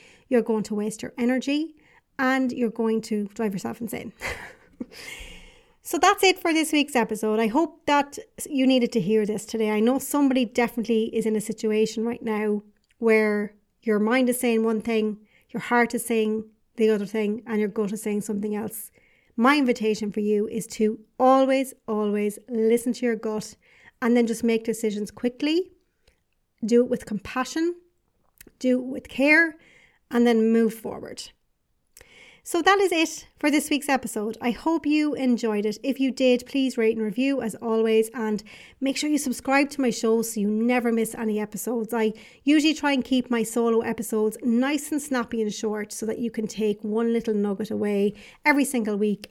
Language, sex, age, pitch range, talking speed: English, female, 40-59, 220-260 Hz, 185 wpm